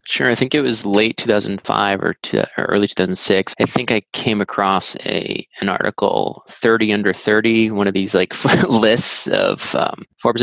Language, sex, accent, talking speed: English, male, American, 180 wpm